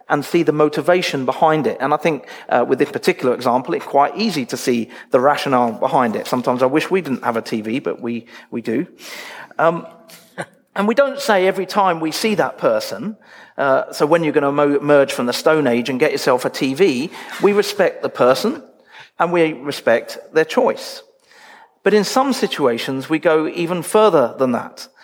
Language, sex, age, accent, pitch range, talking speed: English, male, 40-59, British, 145-220 Hz, 195 wpm